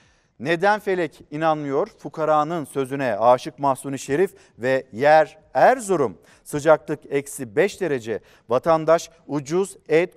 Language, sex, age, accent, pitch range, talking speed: Turkish, male, 50-69, native, 135-165 Hz, 105 wpm